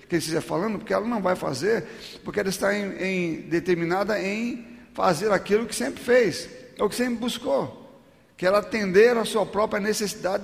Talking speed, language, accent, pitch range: 180 wpm, Portuguese, Brazilian, 165-225 Hz